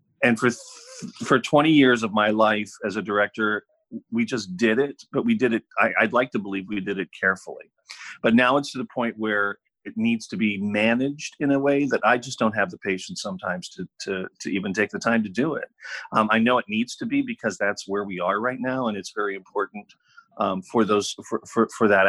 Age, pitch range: 40-59, 105-140 Hz